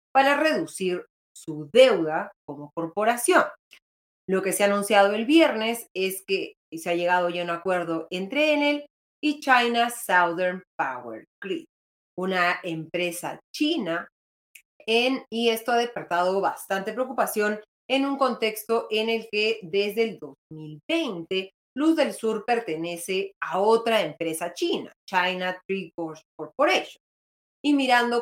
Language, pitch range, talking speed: Spanish, 175-235 Hz, 130 wpm